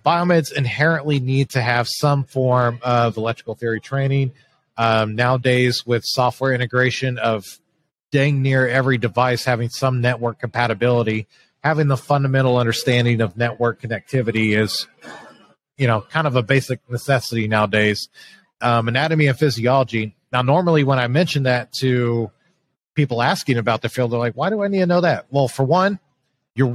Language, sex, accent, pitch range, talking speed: English, male, American, 120-145 Hz, 155 wpm